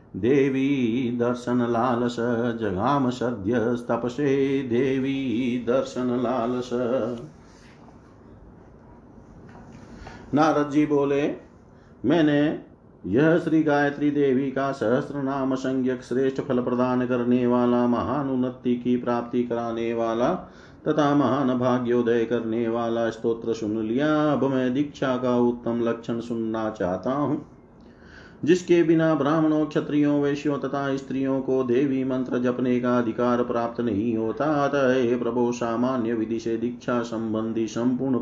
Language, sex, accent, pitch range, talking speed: Hindi, male, native, 115-140 Hz, 115 wpm